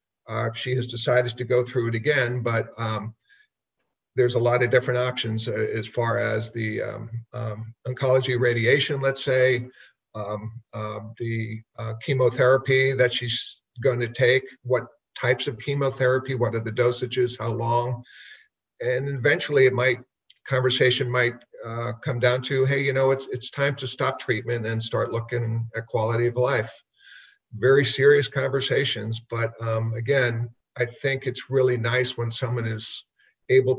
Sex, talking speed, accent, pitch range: male, 160 wpm, American, 115-130 Hz